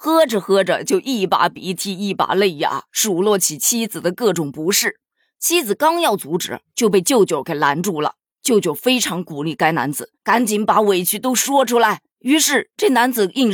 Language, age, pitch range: Chinese, 20-39, 175-255 Hz